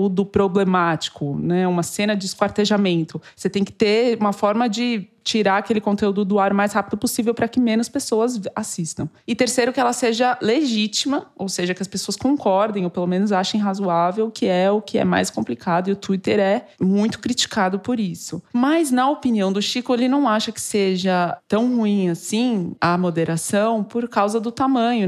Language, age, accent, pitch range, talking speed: Portuguese, 20-39, Brazilian, 180-225 Hz, 185 wpm